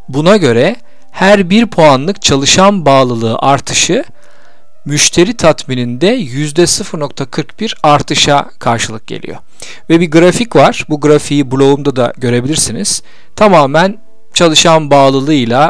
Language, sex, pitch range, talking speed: Turkish, male, 135-185 Hz, 100 wpm